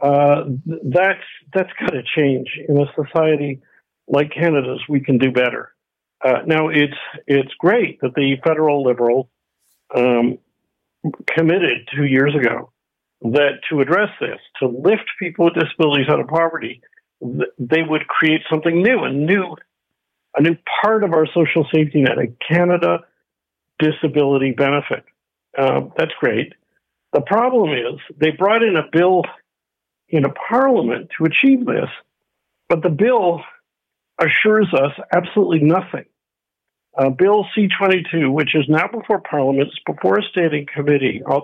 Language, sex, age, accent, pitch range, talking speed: English, male, 50-69, American, 140-175 Hz, 140 wpm